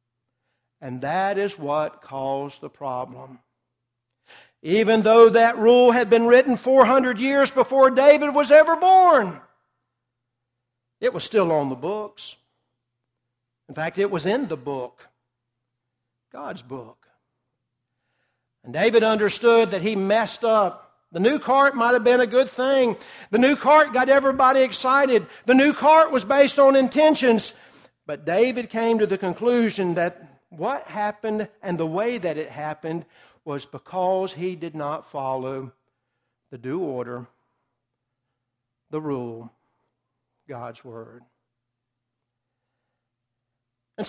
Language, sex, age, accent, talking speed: English, male, 60-79, American, 130 wpm